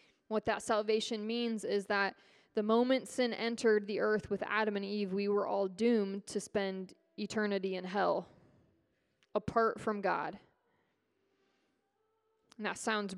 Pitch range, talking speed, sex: 195-230 Hz, 140 wpm, female